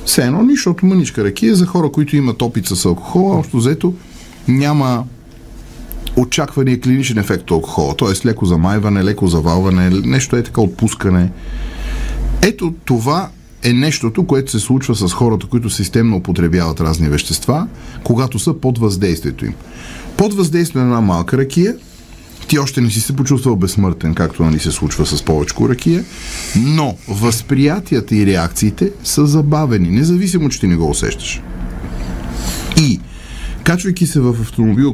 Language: Bulgarian